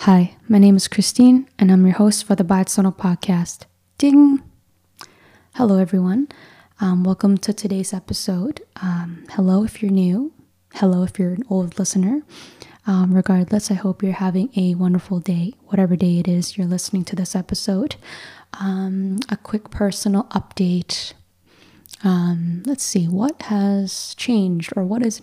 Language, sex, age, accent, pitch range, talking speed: English, female, 10-29, American, 185-220 Hz, 150 wpm